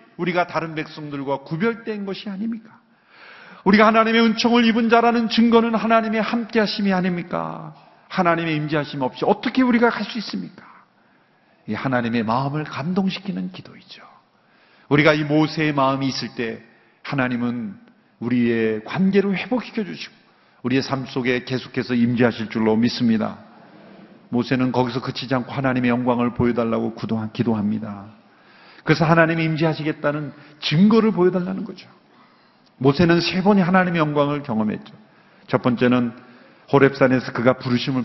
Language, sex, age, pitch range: Korean, male, 40-59, 125-180 Hz